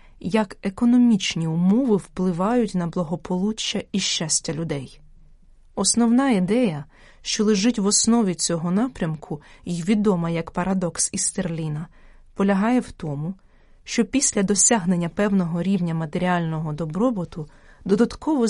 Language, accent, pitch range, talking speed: Ukrainian, native, 165-220 Hz, 105 wpm